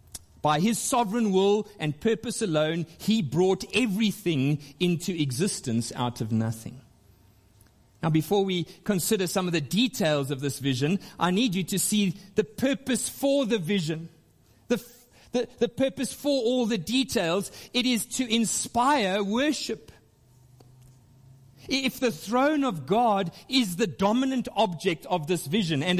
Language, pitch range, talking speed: English, 155-220 Hz, 140 wpm